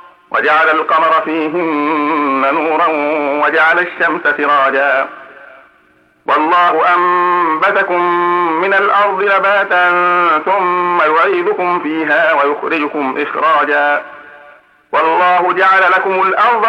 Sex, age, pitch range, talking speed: male, 50-69, 145-180 Hz, 75 wpm